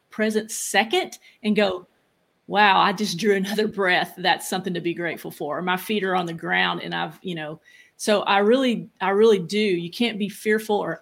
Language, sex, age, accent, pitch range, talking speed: English, female, 40-59, American, 180-215 Hz, 200 wpm